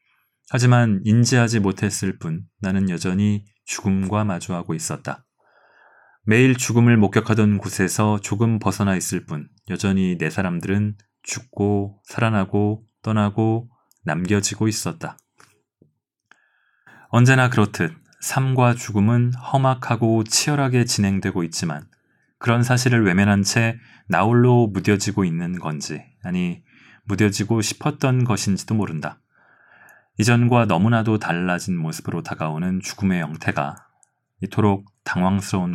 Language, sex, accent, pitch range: Korean, male, native, 95-115 Hz